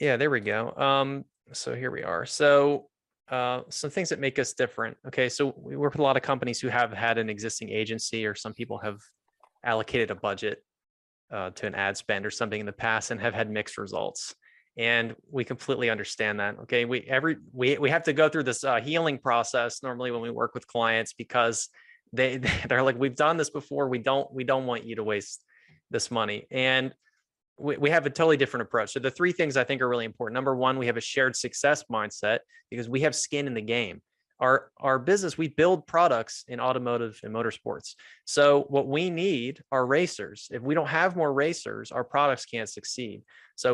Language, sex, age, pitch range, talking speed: English, male, 20-39, 120-145 Hz, 210 wpm